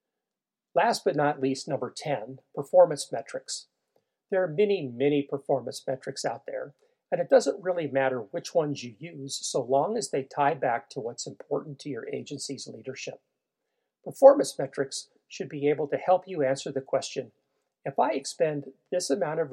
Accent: American